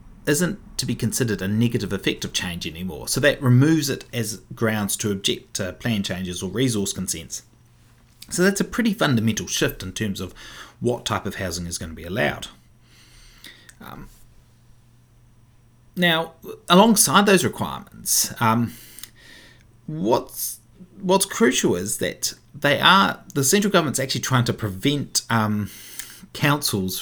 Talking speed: 140 wpm